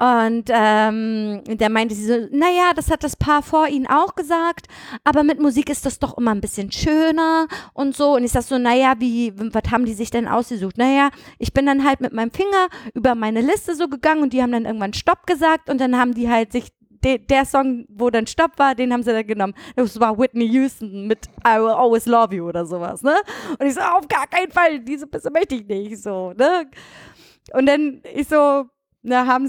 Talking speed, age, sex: 220 wpm, 20-39, female